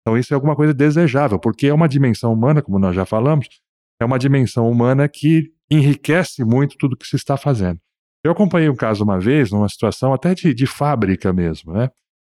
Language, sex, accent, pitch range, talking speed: Portuguese, male, Brazilian, 100-140 Hz, 205 wpm